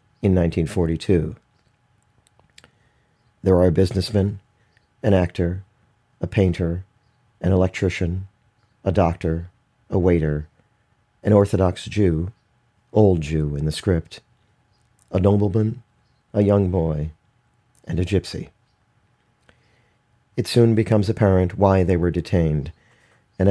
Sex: male